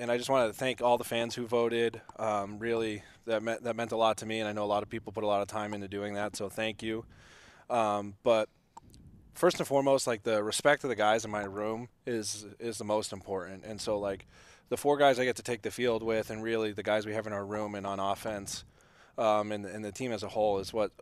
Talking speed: 265 wpm